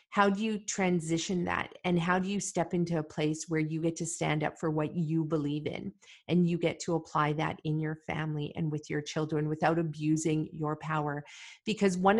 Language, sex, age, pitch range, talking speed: English, female, 40-59, 155-170 Hz, 210 wpm